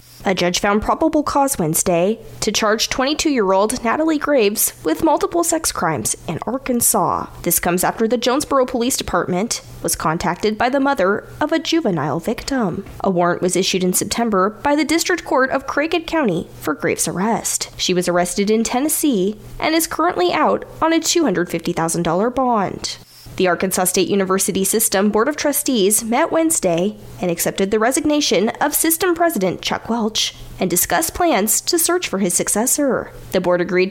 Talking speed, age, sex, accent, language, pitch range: 165 wpm, 10-29, female, American, English, 190-305 Hz